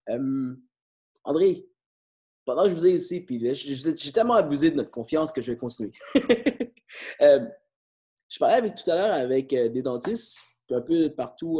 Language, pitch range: English, 145-220 Hz